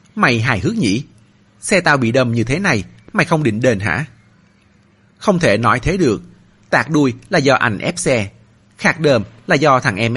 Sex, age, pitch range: male, 30-49, 105-145 Hz